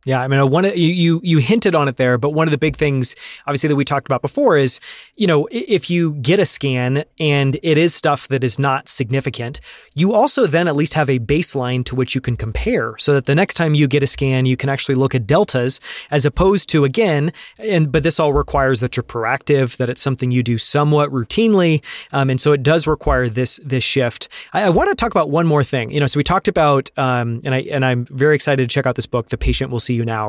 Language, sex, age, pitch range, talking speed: English, male, 30-49, 130-155 Hz, 255 wpm